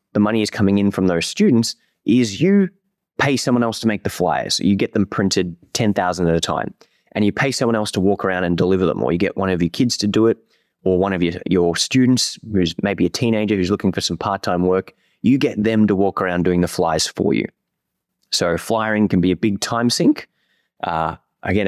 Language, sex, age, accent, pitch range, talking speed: English, male, 20-39, Australian, 90-110 Hz, 240 wpm